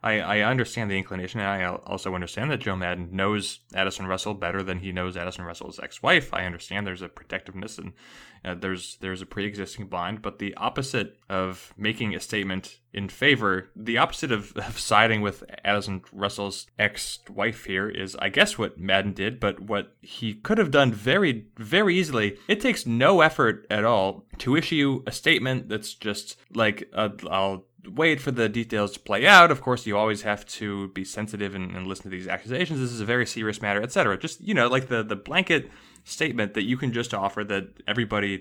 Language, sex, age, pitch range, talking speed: English, male, 20-39, 95-125 Hz, 195 wpm